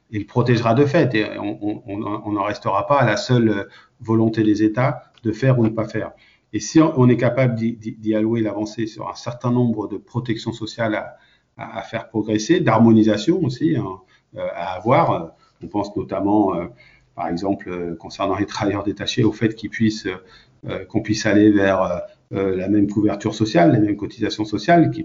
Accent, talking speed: French, 170 wpm